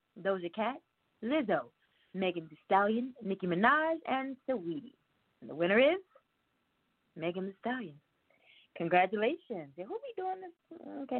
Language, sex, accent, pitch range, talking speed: English, female, American, 195-300 Hz, 130 wpm